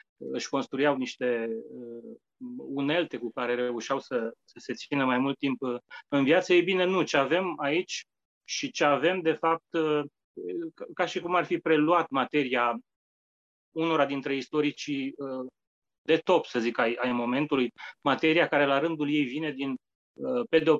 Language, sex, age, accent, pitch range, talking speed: English, male, 30-49, Romanian, 130-160 Hz, 165 wpm